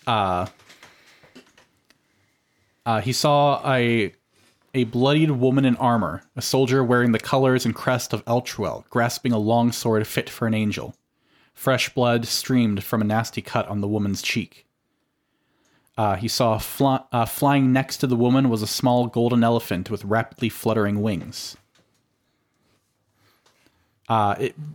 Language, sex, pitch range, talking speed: English, male, 105-125 Hz, 145 wpm